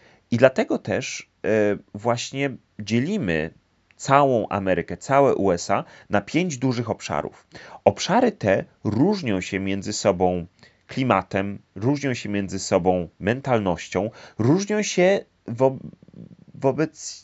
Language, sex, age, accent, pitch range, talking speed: Polish, male, 30-49, native, 95-135 Hz, 105 wpm